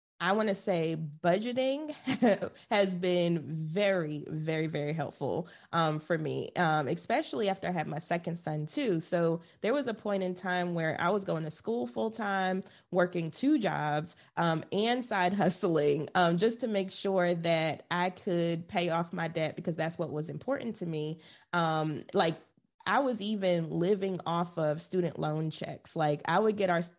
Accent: American